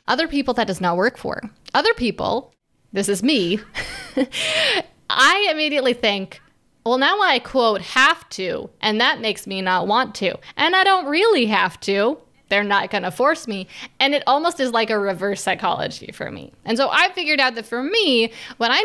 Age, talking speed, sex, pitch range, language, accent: 20-39, 190 wpm, female, 200-260 Hz, English, American